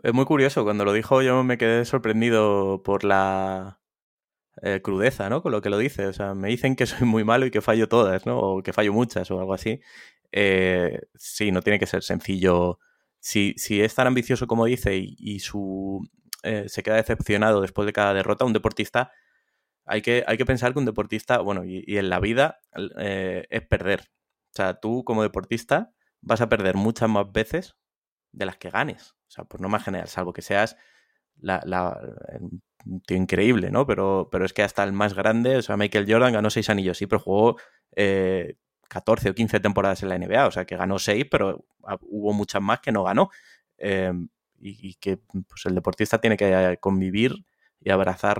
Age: 20-39